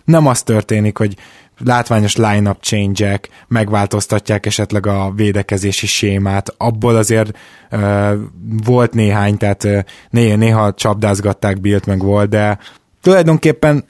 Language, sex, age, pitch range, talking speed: Hungarian, male, 20-39, 105-130 Hz, 110 wpm